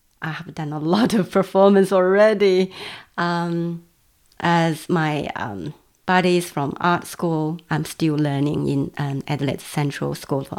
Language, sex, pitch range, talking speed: English, female, 150-180 Hz, 140 wpm